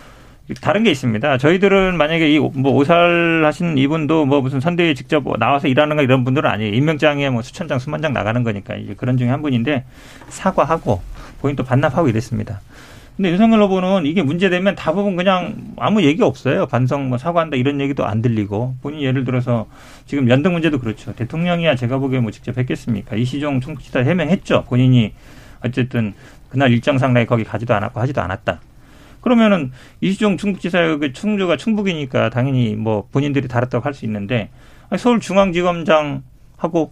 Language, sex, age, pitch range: Korean, male, 40-59, 120-155 Hz